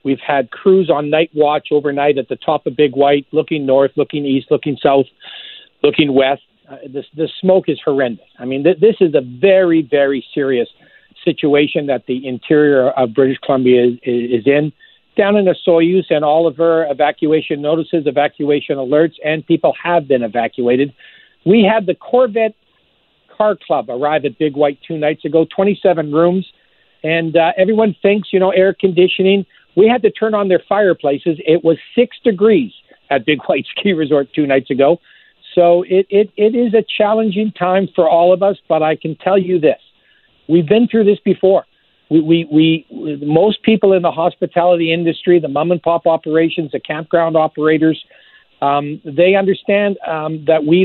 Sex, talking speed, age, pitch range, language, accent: male, 175 wpm, 50-69, 150-195 Hz, English, American